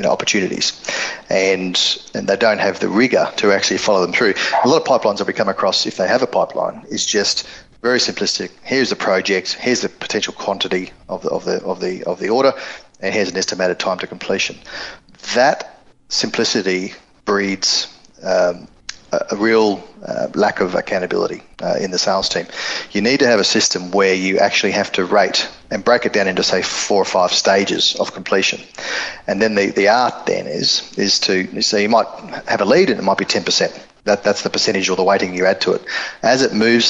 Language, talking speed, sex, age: English, 210 wpm, male, 40-59